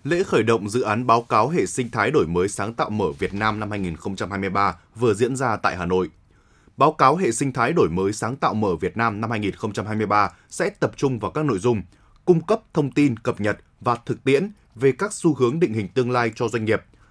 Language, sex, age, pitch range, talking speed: Vietnamese, male, 20-39, 105-140 Hz, 230 wpm